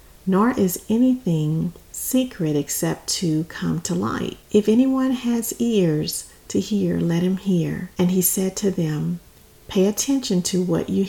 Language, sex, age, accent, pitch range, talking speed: English, female, 40-59, American, 170-210 Hz, 150 wpm